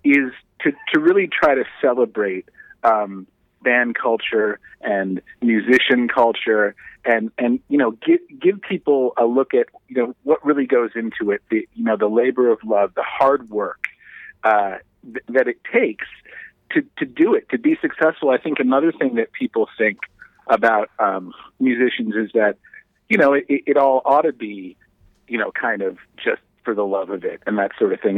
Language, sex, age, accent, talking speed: English, male, 40-59, American, 185 wpm